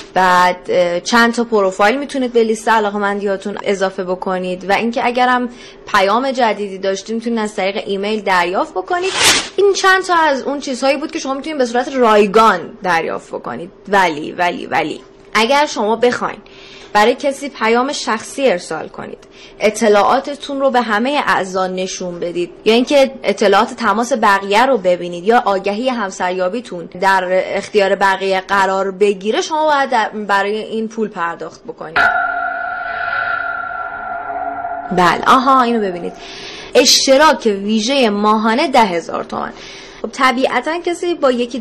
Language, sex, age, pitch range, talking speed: Persian, female, 20-39, 195-265 Hz, 135 wpm